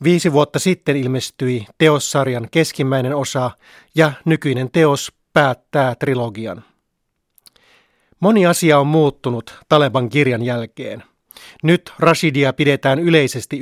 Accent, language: native, Finnish